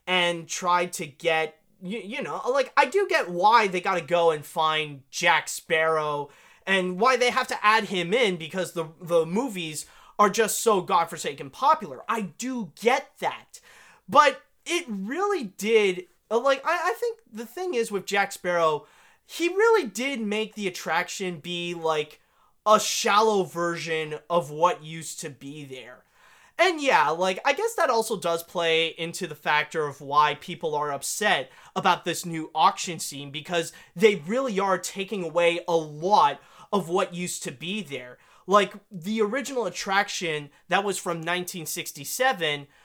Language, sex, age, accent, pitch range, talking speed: English, male, 20-39, American, 165-225 Hz, 160 wpm